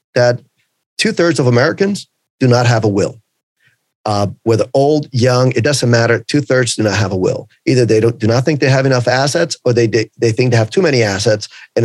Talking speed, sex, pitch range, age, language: 210 wpm, male, 110-135 Hz, 40-59, English